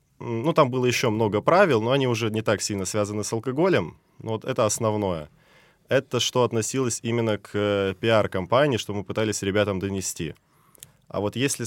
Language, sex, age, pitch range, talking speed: Russian, male, 20-39, 100-120 Hz, 165 wpm